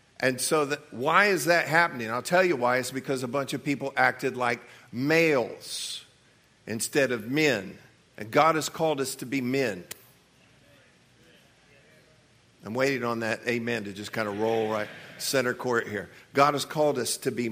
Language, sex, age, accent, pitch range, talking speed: English, male, 50-69, American, 125-155 Hz, 170 wpm